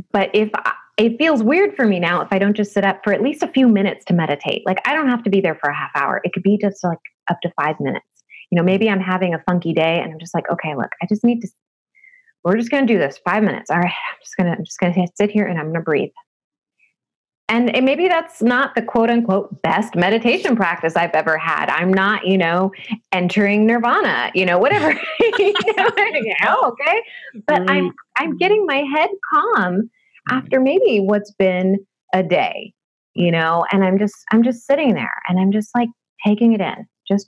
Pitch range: 175-235 Hz